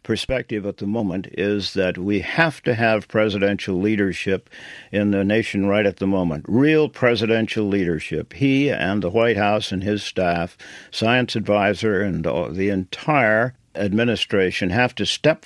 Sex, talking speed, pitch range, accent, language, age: male, 150 wpm, 100-125 Hz, American, English, 60-79